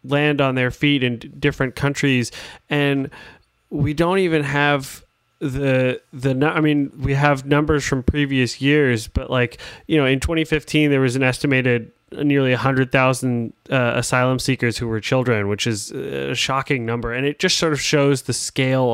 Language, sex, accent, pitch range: English, male, American, 115-135 Hz